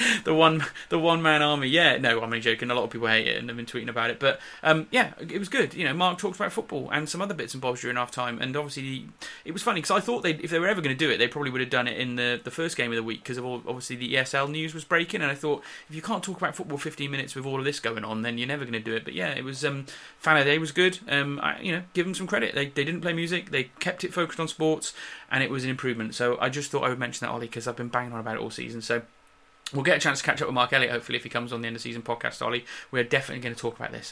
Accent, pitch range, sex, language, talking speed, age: British, 120-155 Hz, male, English, 330 wpm, 30-49